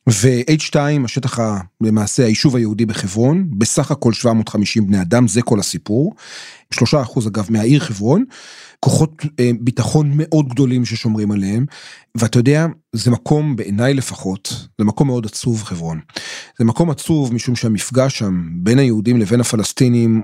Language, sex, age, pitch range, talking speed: Hebrew, male, 30-49, 110-145 Hz, 140 wpm